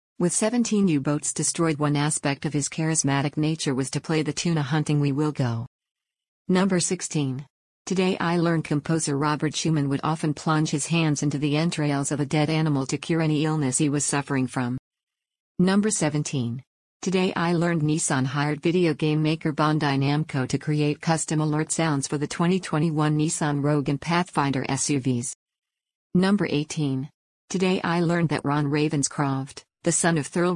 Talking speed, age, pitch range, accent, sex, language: 165 wpm, 50-69, 145-165 Hz, American, female, English